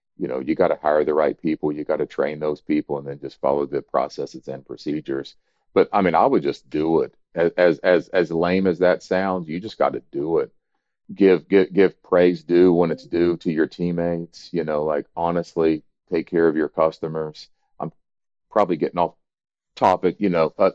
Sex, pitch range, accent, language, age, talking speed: male, 85-120 Hz, American, English, 40-59, 210 wpm